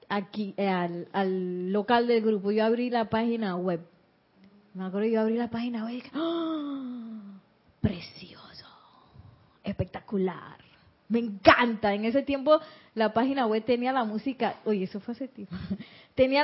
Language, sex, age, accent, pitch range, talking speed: Spanish, female, 30-49, American, 205-275 Hz, 150 wpm